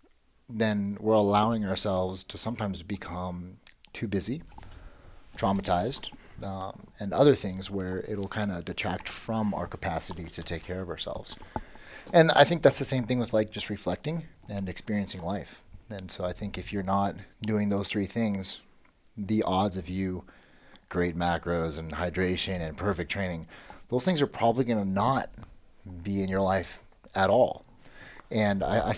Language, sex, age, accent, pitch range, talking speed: English, male, 30-49, American, 95-115 Hz, 165 wpm